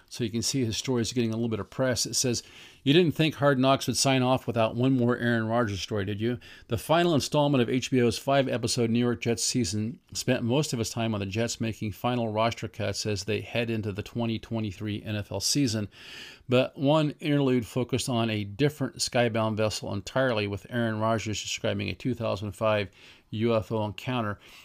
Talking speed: 190 wpm